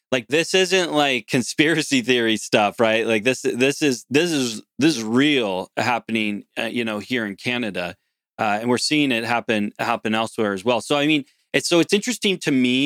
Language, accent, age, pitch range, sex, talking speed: English, American, 20-39, 110-135 Hz, male, 200 wpm